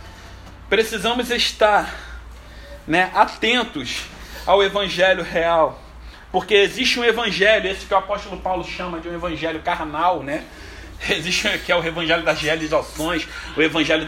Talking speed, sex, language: 130 wpm, male, Portuguese